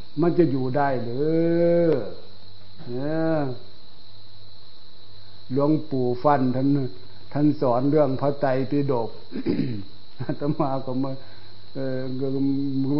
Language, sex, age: Thai, male, 60-79